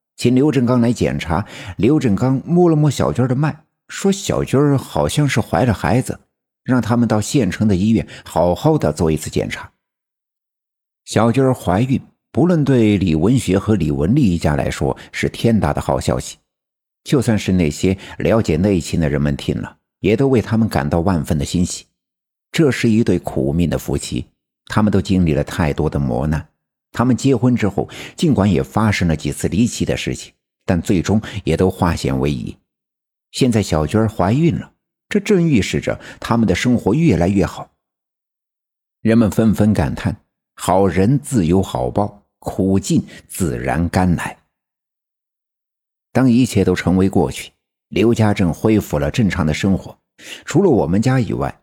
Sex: male